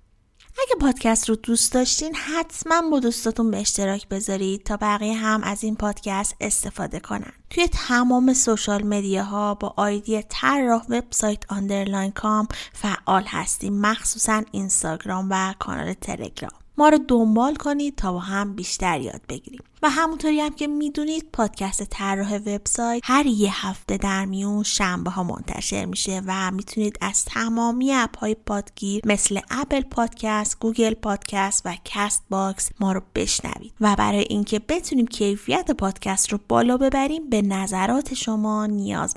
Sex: female